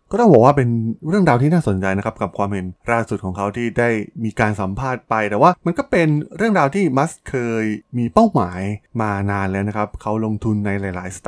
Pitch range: 100-130 Hz